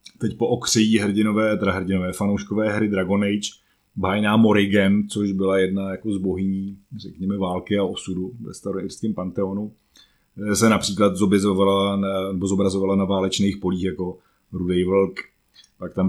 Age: 30-49